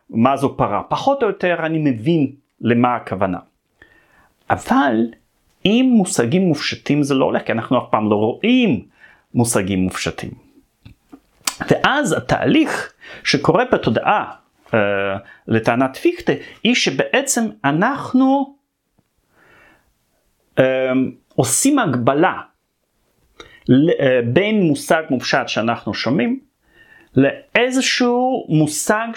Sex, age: male, 40-59